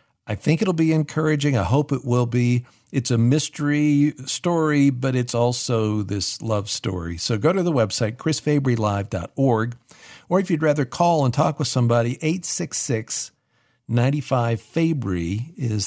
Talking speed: 140 wpm